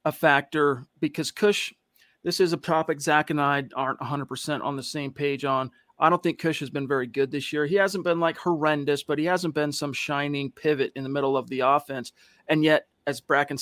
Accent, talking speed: American, 220 wpm